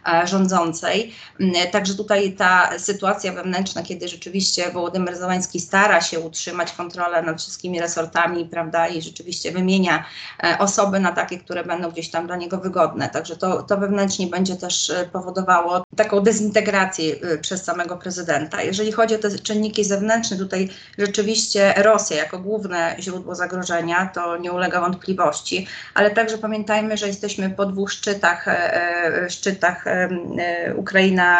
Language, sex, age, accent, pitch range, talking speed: Polish, female, 30-49, native, 175-200 Hz, 135 wpm